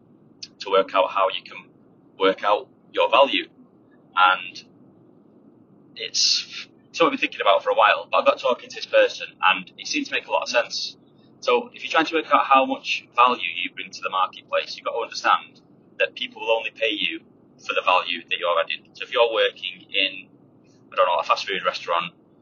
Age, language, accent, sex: 20-39, English, British, male